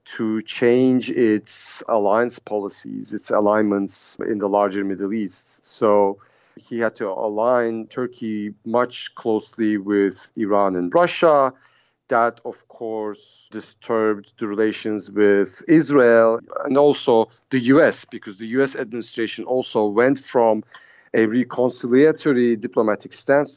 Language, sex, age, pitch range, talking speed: English, male, 40-59, 105-130 Hz, 120 wpm